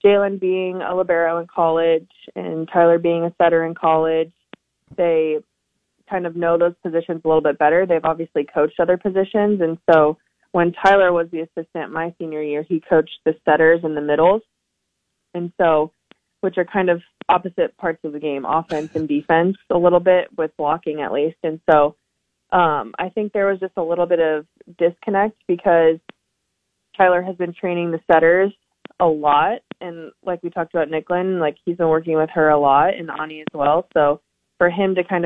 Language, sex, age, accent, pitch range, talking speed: English, female, 20-39, American, 155-175 Hz, 190 wpm